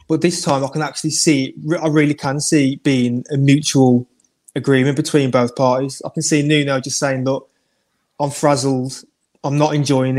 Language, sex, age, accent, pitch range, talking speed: English, male, 20-39, British, 135-150 Hz, 185 wpm